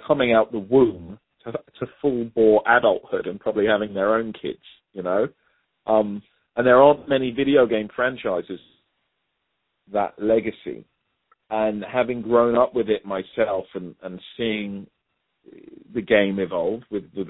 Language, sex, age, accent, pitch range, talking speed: English, male, 40-59, British, 100-130 Hz, 140 wpm